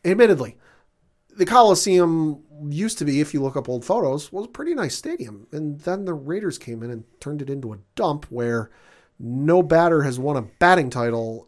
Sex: male